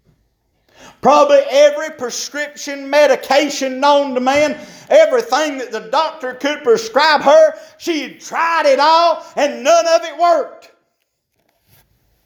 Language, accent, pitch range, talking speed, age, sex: English, American, 260-305 Hz, 115 wpm, 50-69, male